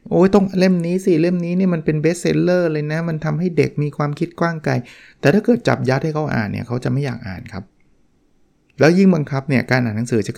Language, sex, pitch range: Thai, male, 120-160 Hz